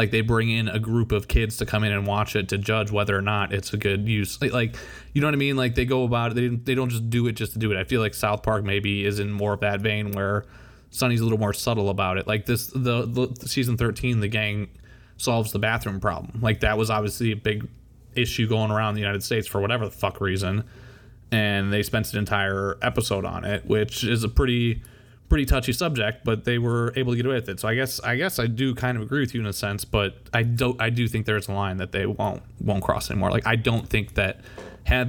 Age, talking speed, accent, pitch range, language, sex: 20-39, 265 wpm, American, 105-115 Hz, English, male